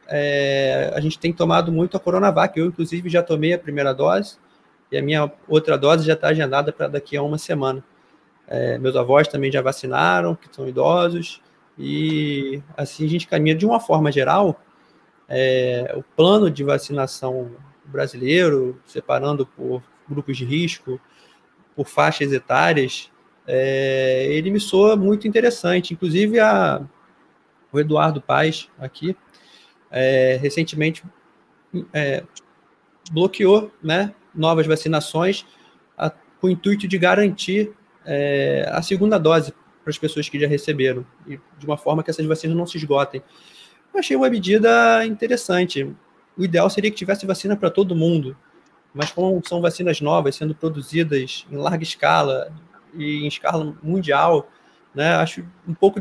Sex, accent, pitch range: male, Brazilian, 140-185 Hz